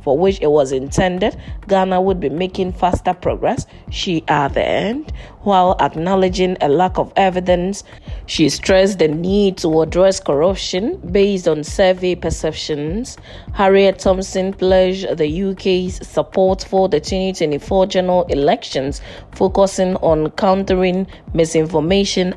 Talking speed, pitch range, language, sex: 120 wpm, 160-195 Hz, English, female